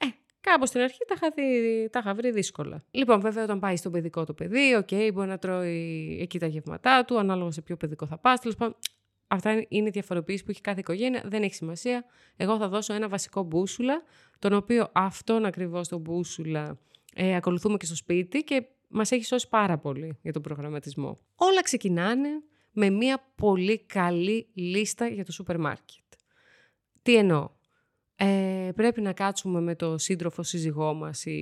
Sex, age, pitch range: female, 20-39, 170-245 Hz